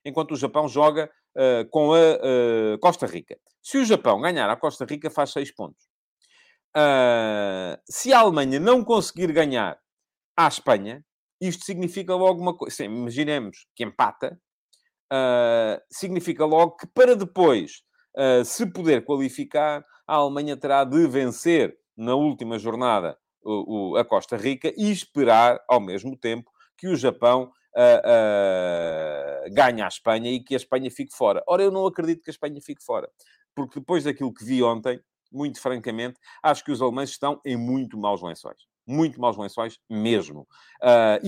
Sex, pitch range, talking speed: male, 125-180 Hz, 150 wpm